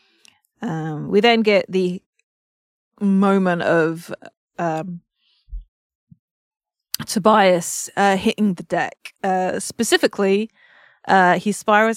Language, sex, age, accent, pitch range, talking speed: English, female, 20-39, British, 175-215 Hz, 90 wpm